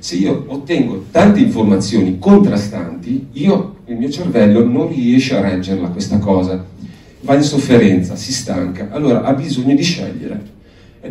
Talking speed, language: 145 wpm, Italian